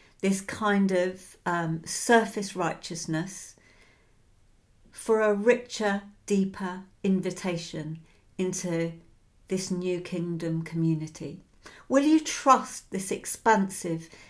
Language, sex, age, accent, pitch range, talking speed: English, female, 50-69, British, 165-230 Hz, 90 wpm